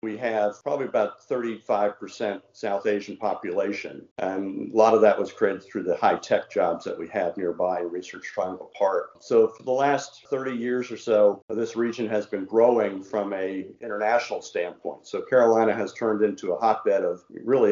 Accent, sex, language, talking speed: American, male, English, 175 wpm